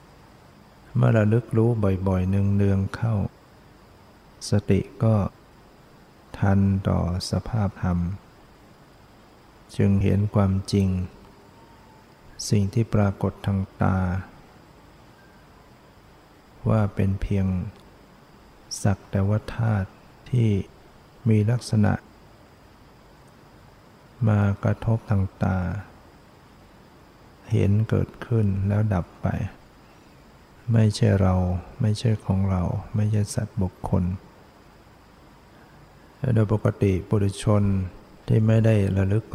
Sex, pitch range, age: male, 95-110 Hz, 60-79